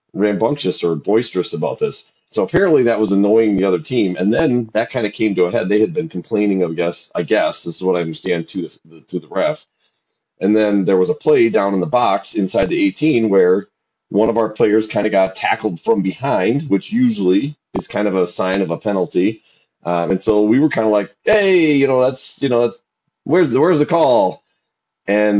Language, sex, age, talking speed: English, male, 30-49, 225 wpm